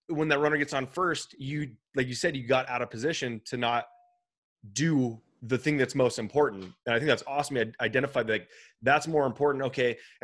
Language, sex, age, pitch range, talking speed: English, male, 20-39, 120-150 Hz, 215 wpm